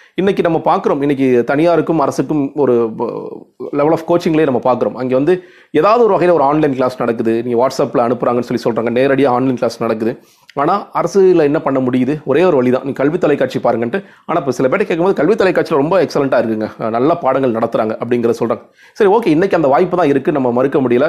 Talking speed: 185 wpm